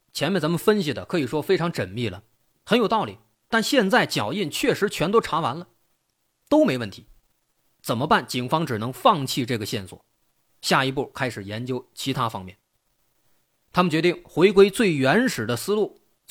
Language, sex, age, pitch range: Chinese, male, 30-49, 115-190 Hz